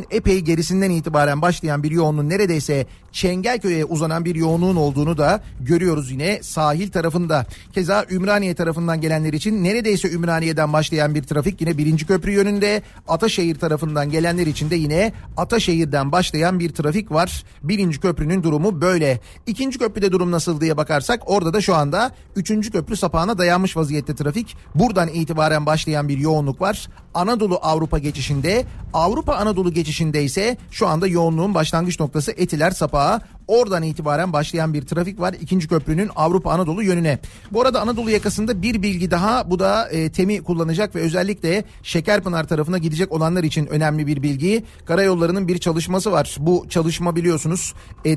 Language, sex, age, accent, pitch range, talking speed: Turkish, male, 40-59, native, 155-195 Hz, 155 wpm